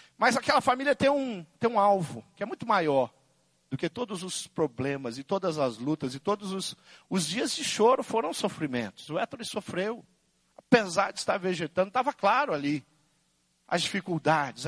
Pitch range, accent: 135-210 Hz, Brazilian